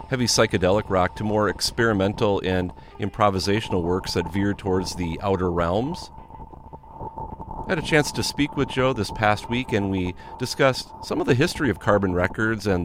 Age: 40-59